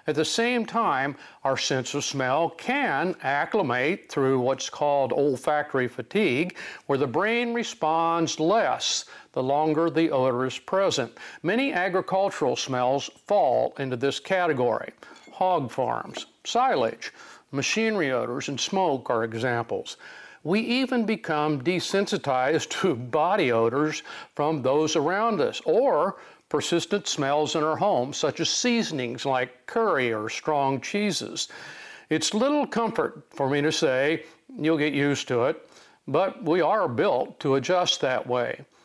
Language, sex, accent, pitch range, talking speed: English, male, American, 135-180 Hz, 135 wpm